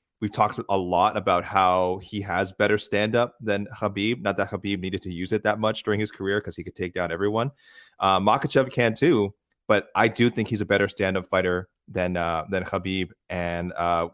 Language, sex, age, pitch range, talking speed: English, male, 30-49, 90-105 Hz, 205 wpm